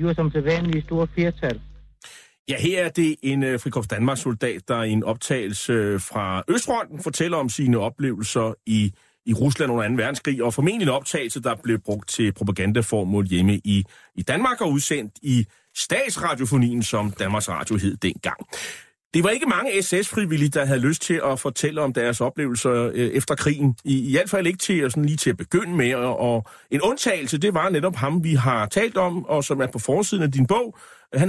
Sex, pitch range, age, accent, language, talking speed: male, 120-170 Hz, 30-49, native, Danish, 180 wpm